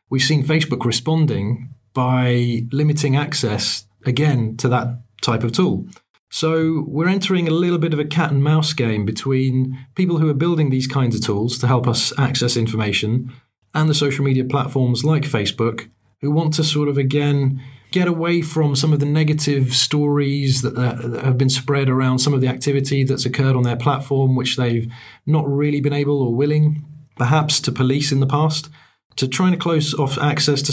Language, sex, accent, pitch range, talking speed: English, male, British, 125-150 Hz, 185 wpm